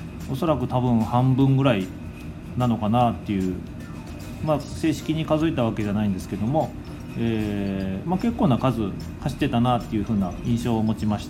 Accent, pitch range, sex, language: native, 100-140 Hz, male, Japanese